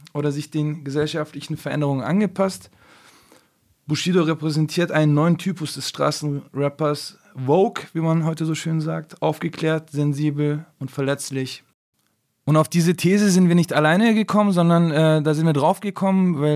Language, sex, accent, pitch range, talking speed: German, male, German, 150-180 Hz, 150 wpm